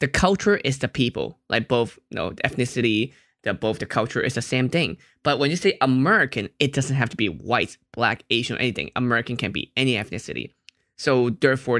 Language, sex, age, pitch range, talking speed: English, male, 20-39, 115-140 Hz, 215 wpm